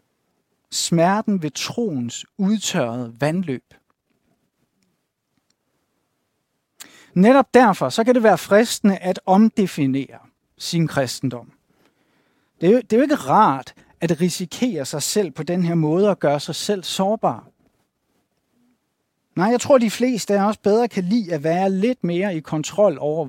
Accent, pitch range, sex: native, 170-235 Hz, male